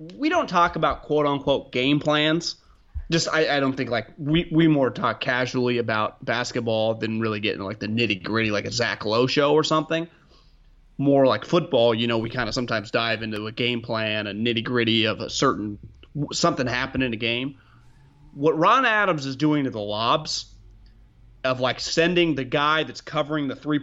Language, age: English, 30-49